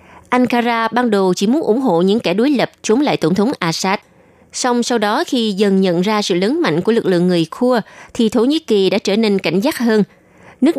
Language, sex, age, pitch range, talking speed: Vietnamese, female, 20-39, 175-225 Hz, 235 wpm